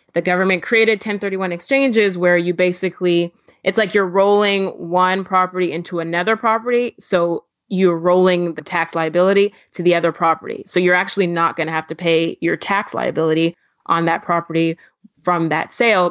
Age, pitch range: 20-39, 165-195 Hz